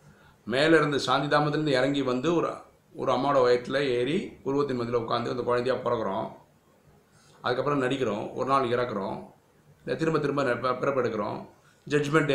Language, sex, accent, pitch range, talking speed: Tamil, male, native, 110-140 Hz, 125 wpm